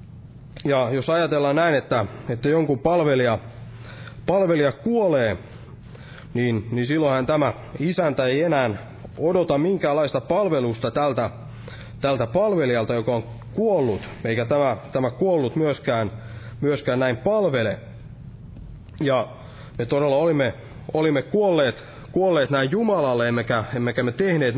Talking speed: 115 wpm